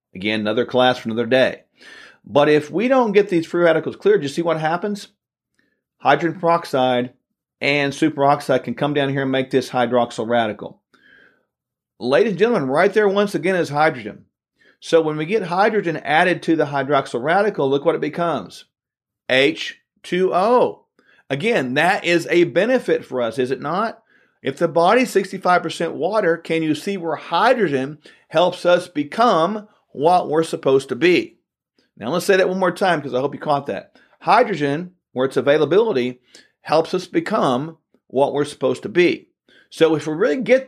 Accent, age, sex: American, 40-59, male